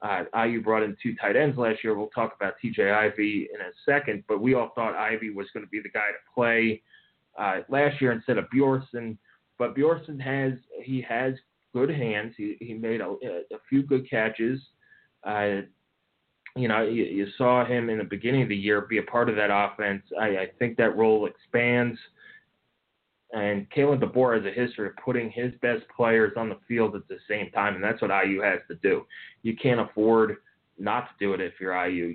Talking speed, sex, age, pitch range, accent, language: 210 wpm, male, 30-49, 105-130 Hz, American, English